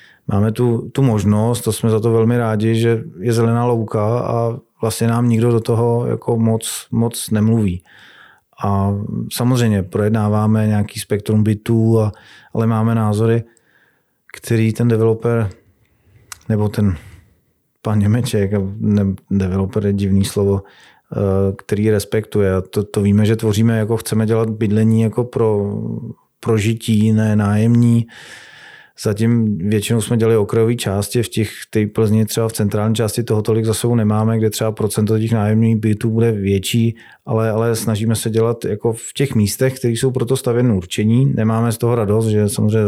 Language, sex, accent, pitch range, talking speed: Czech, male, native, 105-115 Hz, 145 wpm